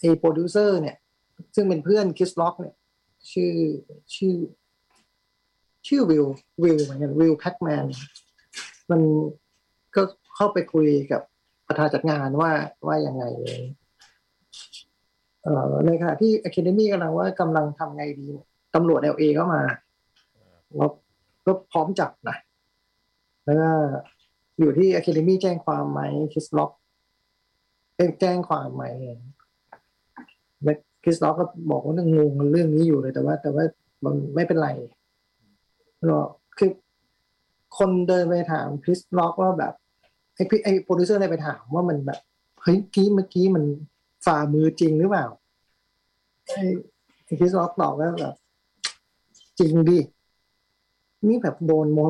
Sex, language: male, Thai